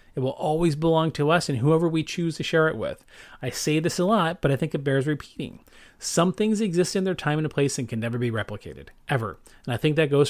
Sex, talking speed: male, 255 wpm